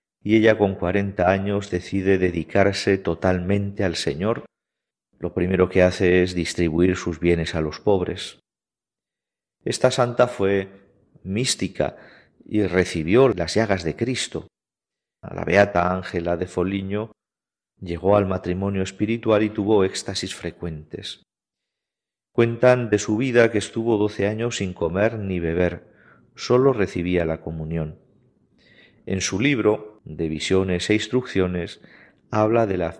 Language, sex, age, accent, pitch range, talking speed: Spanish, male, 40-59, Spanish, 90-115 Hz, 130 wpm